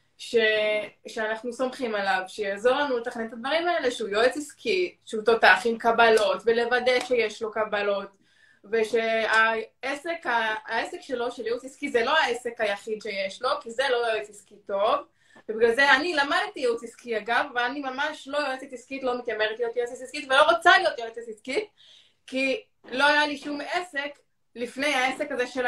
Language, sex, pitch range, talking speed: Hebrew, female, 220-280 Hz, 165 wpm